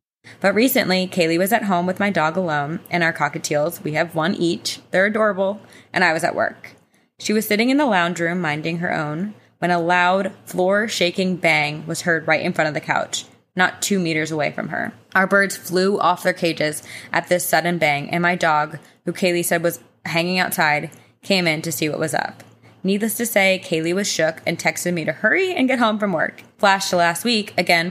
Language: English